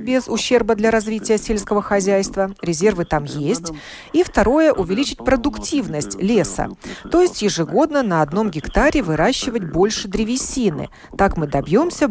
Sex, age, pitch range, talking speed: female, 40-59, 165-235 Hz, 130 wpm